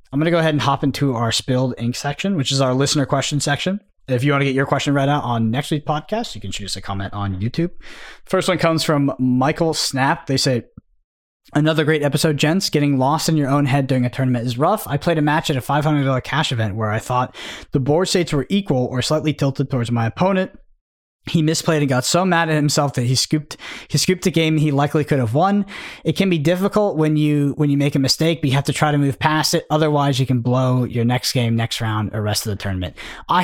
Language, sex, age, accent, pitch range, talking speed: English, male, 20-39, American, 120-155 Hz, 250 wpm